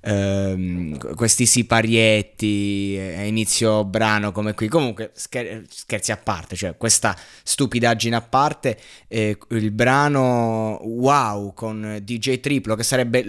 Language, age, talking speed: Italian, 20-39, 115 wpm